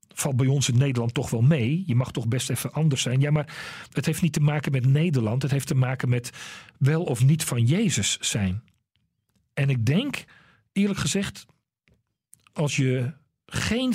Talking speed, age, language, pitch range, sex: 185 wpm, 40-59, Dutch, 125-170 Hz, male